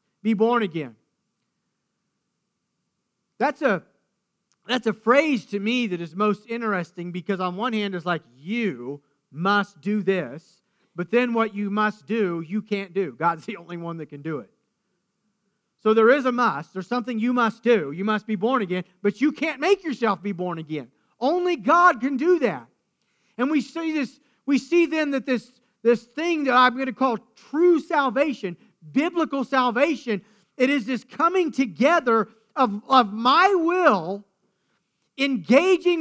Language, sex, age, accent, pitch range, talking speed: English, male, 40-59, American, 200-300 Hz, 165 wpm